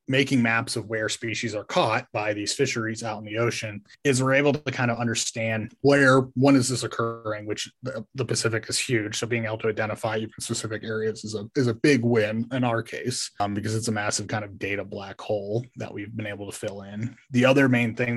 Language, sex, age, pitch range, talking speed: English, male, 20-39, 110-125 Hz, 225 wpm